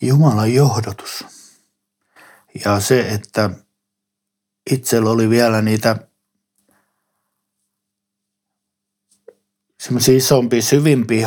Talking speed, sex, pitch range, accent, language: 60 wpm, male, 100-120 Hz, native, Finnish